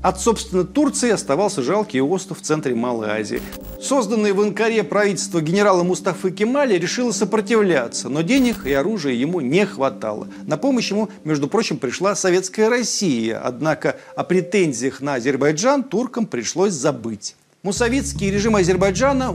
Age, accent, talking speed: 40-59, native, 140 wpm